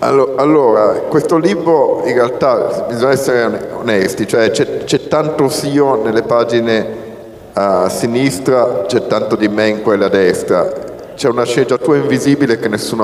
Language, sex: Italian, male